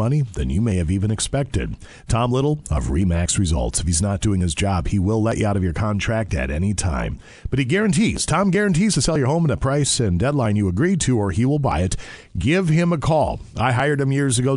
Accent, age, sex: American, 40-59, male